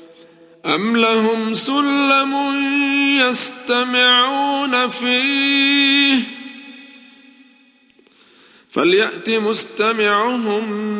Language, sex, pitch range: Arabic, male, 170-240 Hz